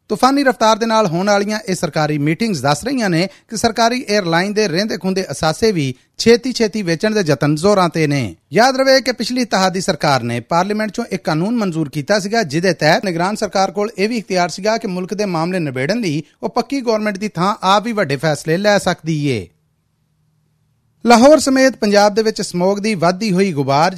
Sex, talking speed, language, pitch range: male, 95 wpm, Punjabi, 155-215 Hz